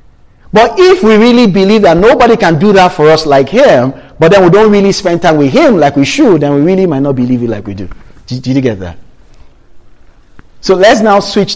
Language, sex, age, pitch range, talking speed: English, male, 40-59, 140-230 Hz, 230 wpm